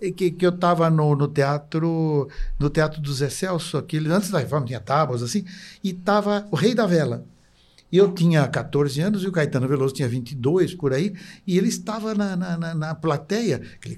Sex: male